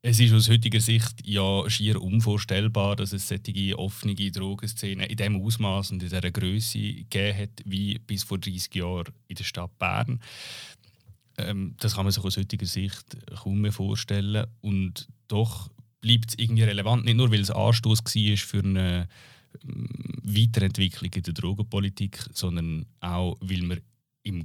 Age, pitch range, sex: 30-49, 95-115 Hz, male